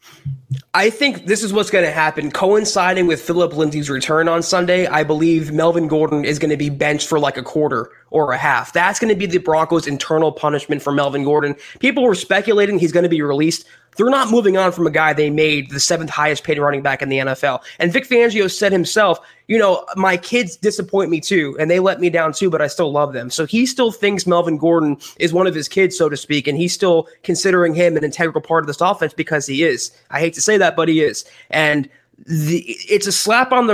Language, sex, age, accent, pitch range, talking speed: English, male, 20-39, American, 150-195 Hz, 235 wpm